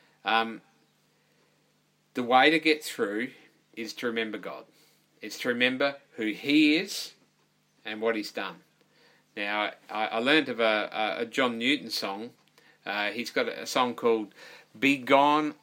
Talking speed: 145 wpm